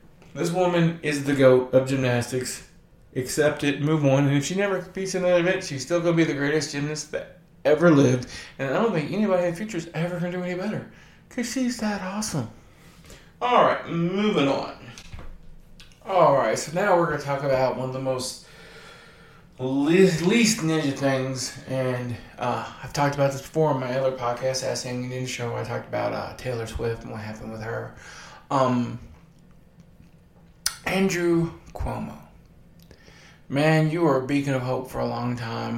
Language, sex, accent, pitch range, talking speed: English, male, American, 125-165 Hz, 185 wpm